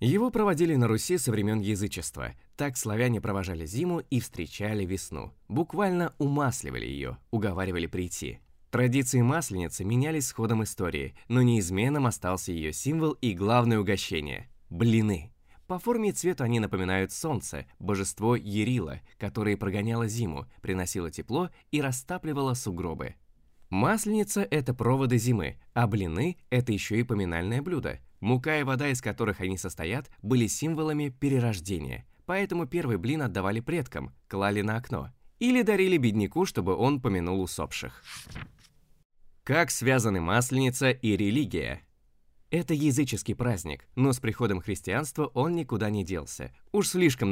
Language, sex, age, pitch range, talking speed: Russian, male, 20-39, 95-145 Hz, 135 wpm